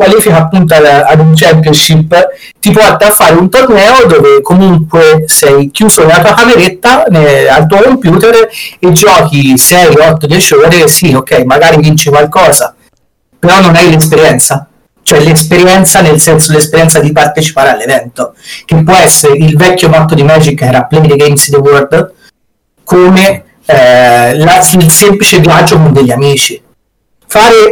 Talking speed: 155 wpm